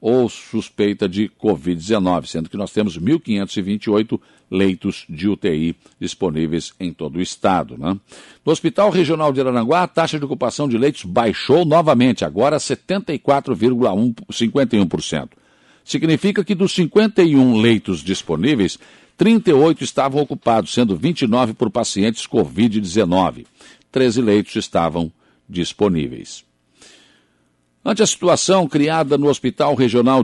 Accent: Brazilian